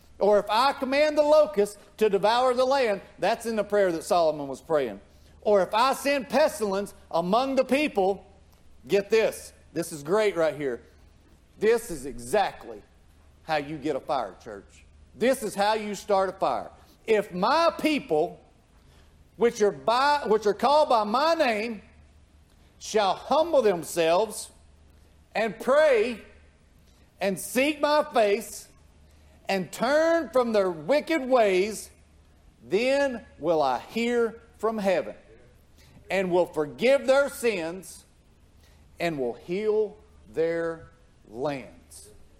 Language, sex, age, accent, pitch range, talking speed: English, male, 50-69, American, 165-265 Hz, 125 wpm